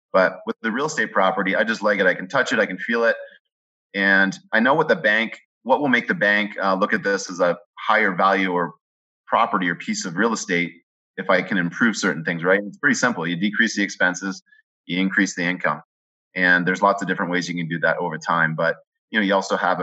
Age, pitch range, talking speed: 30-49, 90-100 Hz, 240 wpm